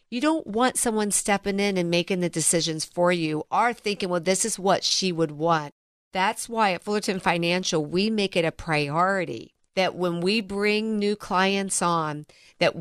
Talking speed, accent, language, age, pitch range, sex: 185 wpm, American, English, 50-69, 165-200 Hz, female